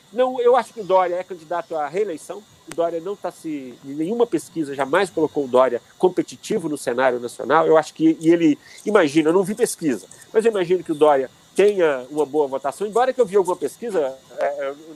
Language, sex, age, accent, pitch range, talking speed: Portuguese, male, 40-59, Brazilian, 145-210 Hz, 210 wpm